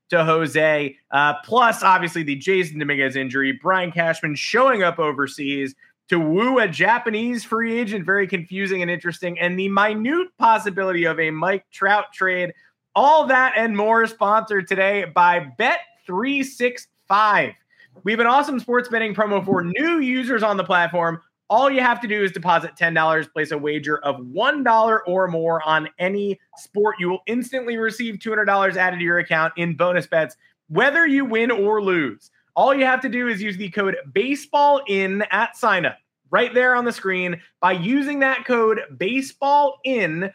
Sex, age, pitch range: male, 20-39, 170-230 Hz